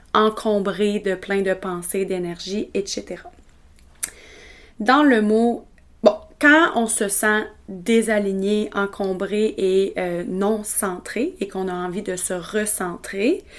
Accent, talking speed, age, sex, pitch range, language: Canadian, 125 wpm, 30-49, female, 190-230 Hz, French